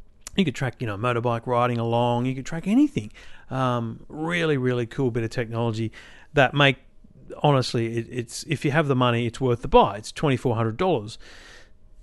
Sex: male